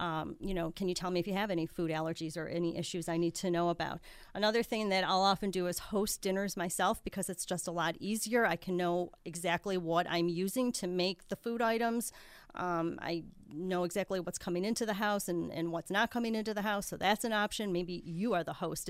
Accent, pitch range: American, 180-210 Hz